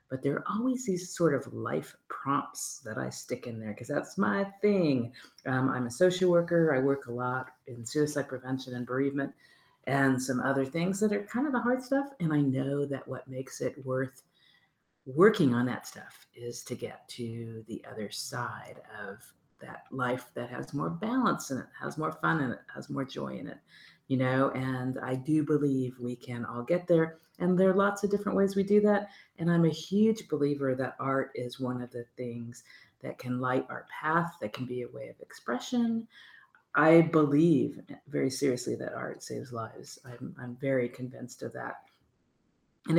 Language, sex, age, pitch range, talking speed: English, female, 50-69, 125-170 Hz, 195 wpm